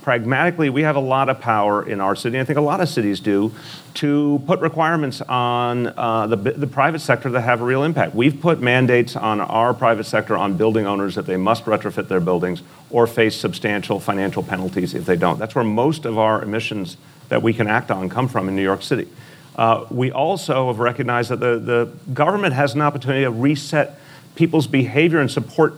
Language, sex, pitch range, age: English, male, 115-150 Hz, 40-59